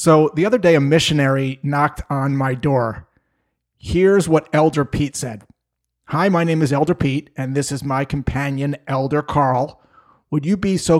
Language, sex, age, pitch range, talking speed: English, male, 30-49, 135-160 Hz, 175 wpm